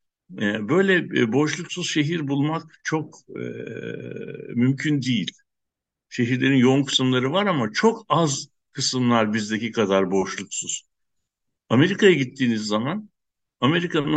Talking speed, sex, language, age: 95 wpm, male, Turkish, 60-79